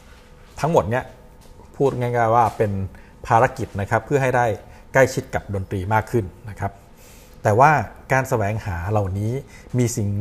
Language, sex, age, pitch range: Thai, male, 60-79, 100-125 Hz